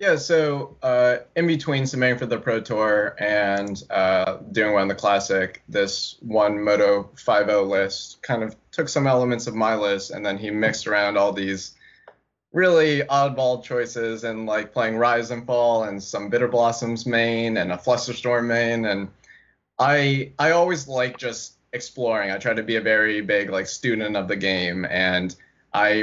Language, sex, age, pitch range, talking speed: English, male, 20-39, 100-125 Hz, 175 wpm